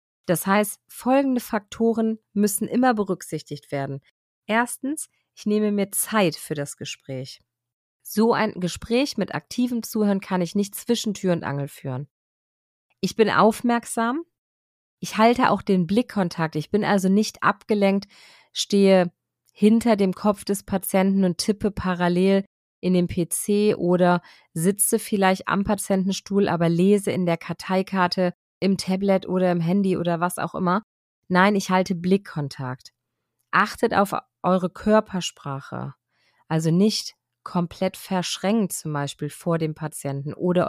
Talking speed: 135 wpm